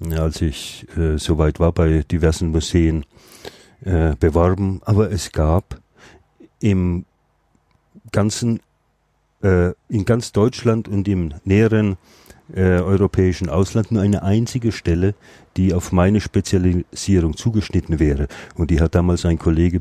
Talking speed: 125 wpm